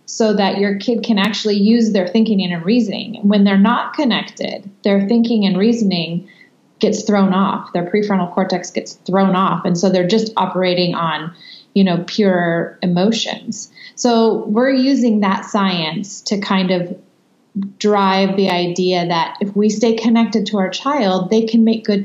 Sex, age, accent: female, 30-49, American